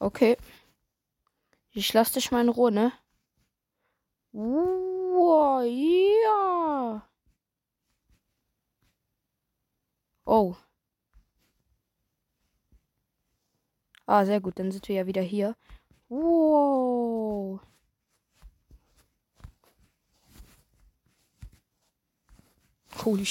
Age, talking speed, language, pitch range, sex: 20-39, 60 wpm, German, 205-260 Hz, female